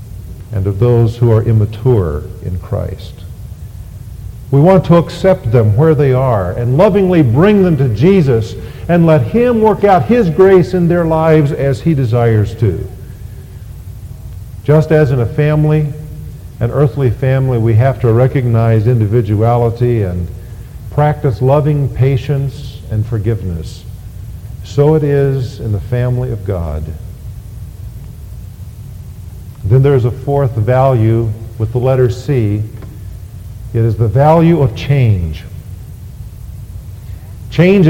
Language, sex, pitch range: English, male, 105-140 Hz